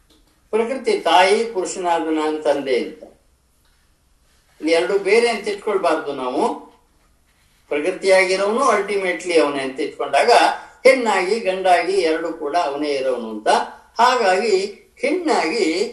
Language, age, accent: Kannada, 60-79, native